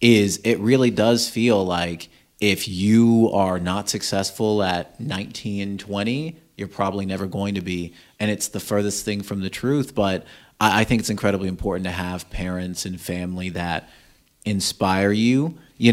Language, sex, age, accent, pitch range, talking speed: English, male, 30-49, American, 95-110 Hz, 160 wpm